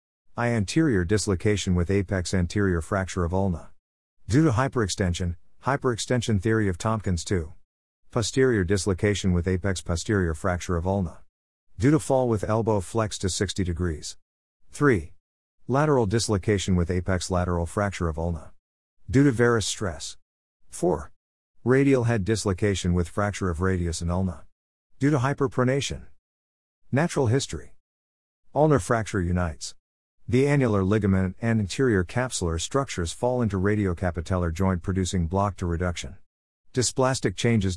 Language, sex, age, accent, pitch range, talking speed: English, male, 50-69, American, 85-110 Hz, 130 wpm